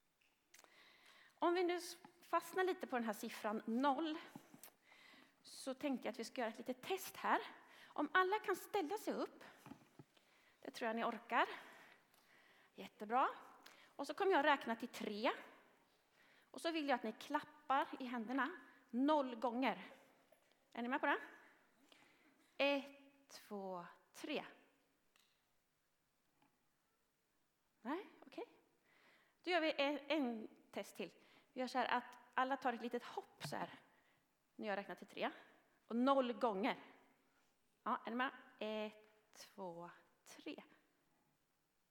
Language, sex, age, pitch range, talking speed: Swedish, female, 30-49, 245-320 Hz, 130 wpm